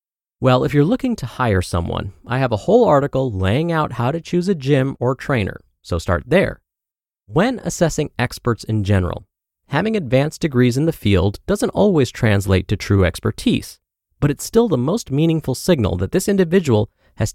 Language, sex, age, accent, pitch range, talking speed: English, male, 30-49, American, 100-150 Hz, 180 wpm